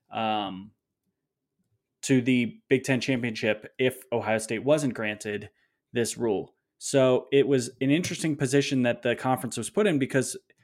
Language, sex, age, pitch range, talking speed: English, male, 20-39, 115-135 Hz, 145 wpm